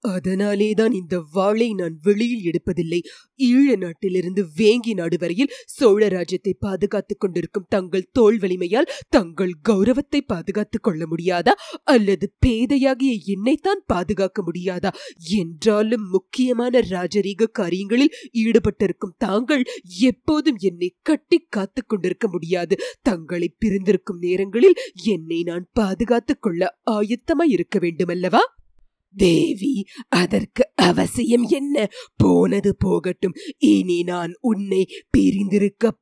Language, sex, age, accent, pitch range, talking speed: English, female, 20-39, Indian, 185-250 Hz, 95 wpm